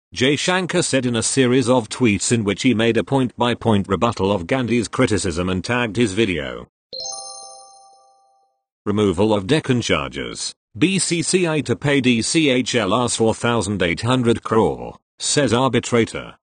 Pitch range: 105-130 Hz